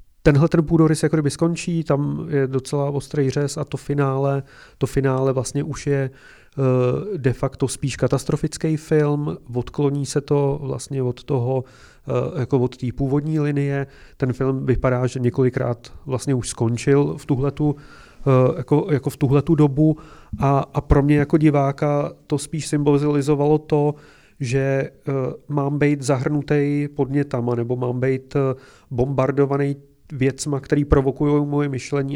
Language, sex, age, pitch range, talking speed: Czech, male, 30-49, 130-145 Hz, 140 wpm